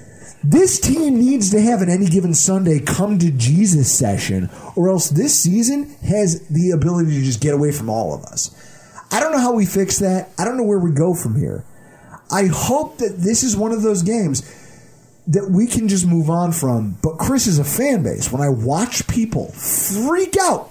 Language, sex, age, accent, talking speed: English, male, 30-49, American, 205 wpm